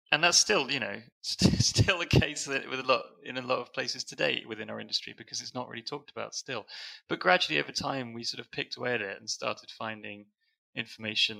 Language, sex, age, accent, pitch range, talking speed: English, male, 20-39, British, 100-115 Hz, 225 wpm